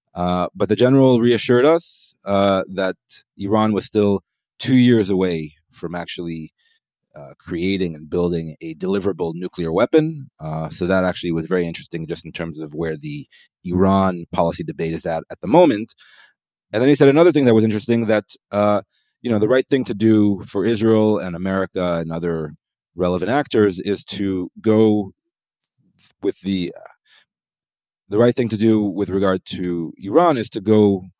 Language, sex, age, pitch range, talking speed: English, male, 30-49, 90-110 Hz, 170 wpm